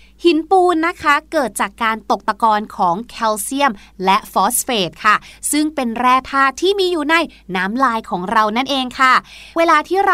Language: Thai